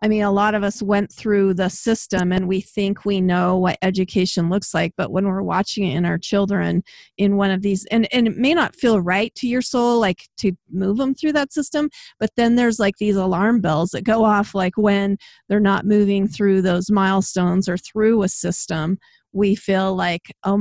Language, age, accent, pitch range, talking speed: English, 40-59, American, 185-220 Hz, 215 wpm